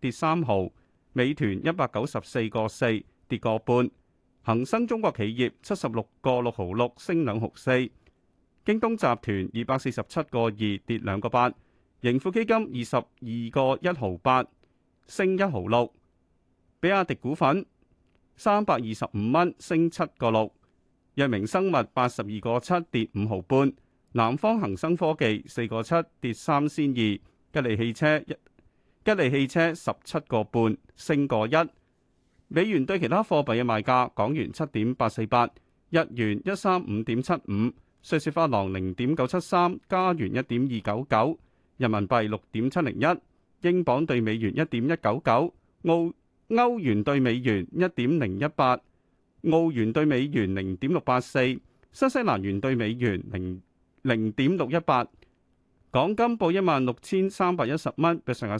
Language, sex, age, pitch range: Chinese, male, 30-49, 110-165 Hz